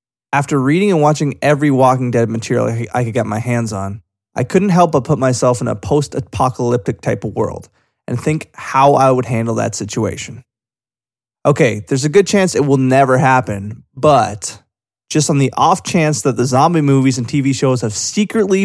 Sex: male